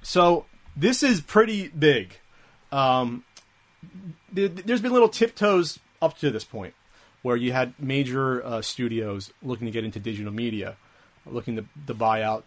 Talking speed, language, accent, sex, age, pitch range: 150 wpm, English, American, male, 30-49, 115-150 Hz